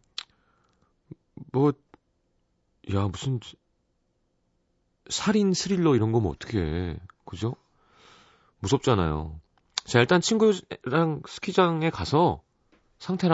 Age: 40-59